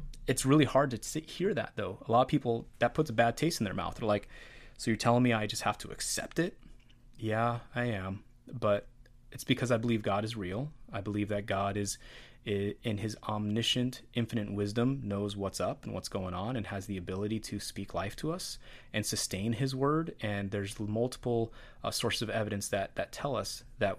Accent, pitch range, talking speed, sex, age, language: American, 105-120 Hz, 210 wpm, male, 30-49, English